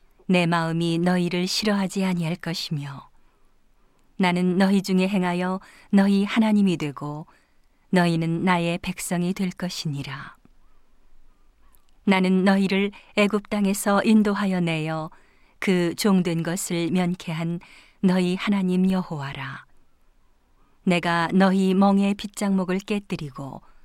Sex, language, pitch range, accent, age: female, Korean, 170-200 Hz, native, 40-59